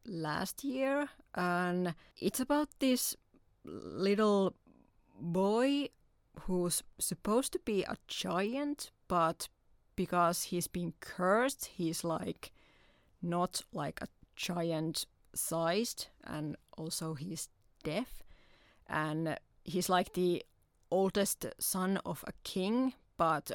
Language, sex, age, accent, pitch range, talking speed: Finnish, female, 30-49, native, 165-200 Hz, 100 wpm